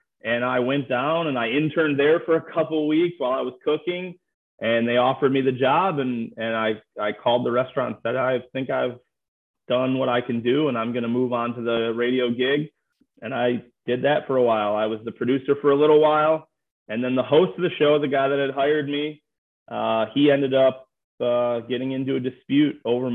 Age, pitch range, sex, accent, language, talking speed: 30-49, 125-150 Hz, male, American, English, 225 wpm